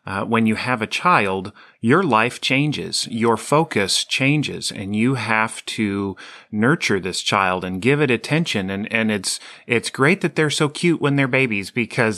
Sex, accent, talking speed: male, American, 175 wpm